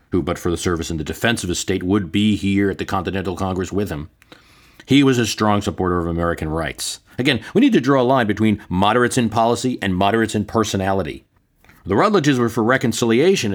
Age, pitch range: 40-59, 90-120 Hz